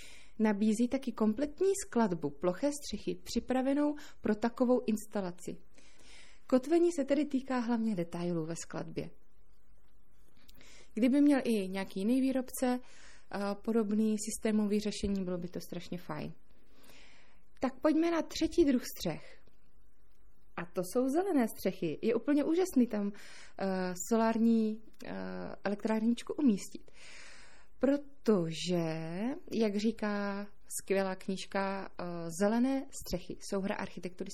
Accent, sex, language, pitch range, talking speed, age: native, female, Czech, 185-250 Hz, 105 wpm, 20-39